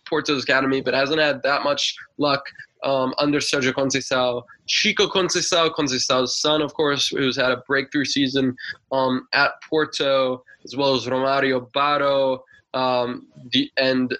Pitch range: 130-155 Hz